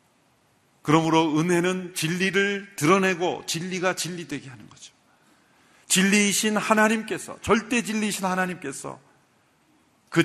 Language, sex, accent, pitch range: Korean, male, native, 125-185 Hz